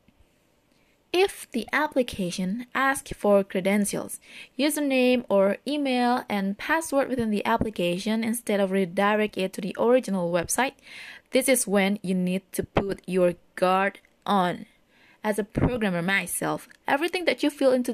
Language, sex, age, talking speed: English, female, 20-39, 135 wpm